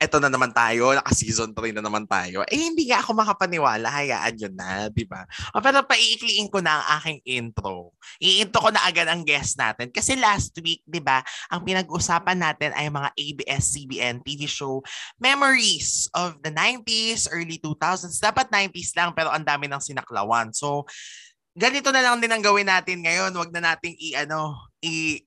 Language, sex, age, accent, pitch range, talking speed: Filipino, male, 20-39, native, 130-195 Hz, 175 wpm